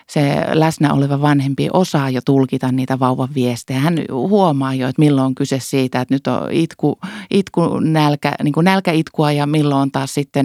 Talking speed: 185 wpm